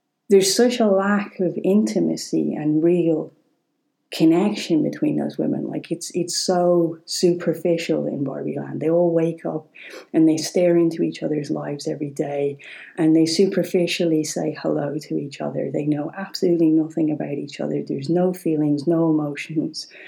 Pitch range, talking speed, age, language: 150-180 Hz, 160 wpm, 40-59, English